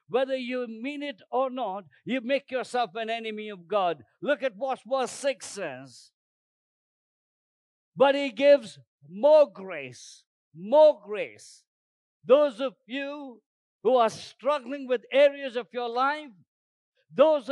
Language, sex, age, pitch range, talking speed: English, male, 50-69, 205-285 Hz, 130 wpm